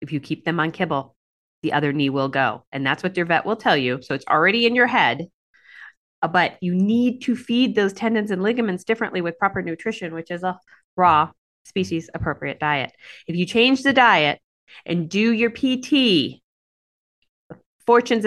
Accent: American